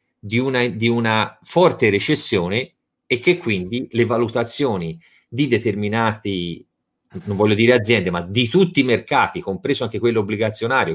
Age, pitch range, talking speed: 30-49, 110-140 Hz, 140 wpm